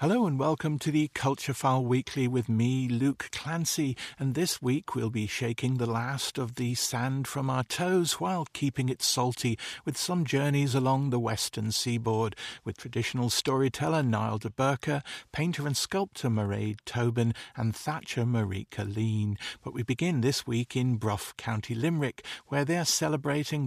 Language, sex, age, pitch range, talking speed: English, male, 50-69, 115-145 Hz, 160 wpm